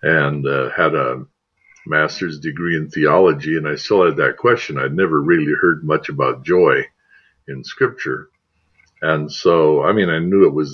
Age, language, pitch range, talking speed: 60-79, English, 80-110 Hz, 175 wpm